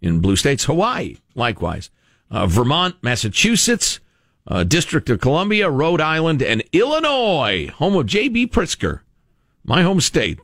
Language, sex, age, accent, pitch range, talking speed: English, male, 50-69, American, 105-160 Hz, 130 wpm